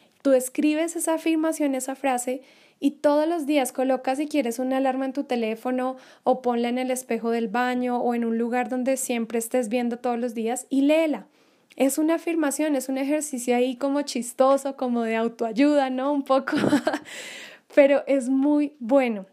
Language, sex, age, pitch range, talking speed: Spanish, female, 10-29, 245-290 Hz, 175 wpm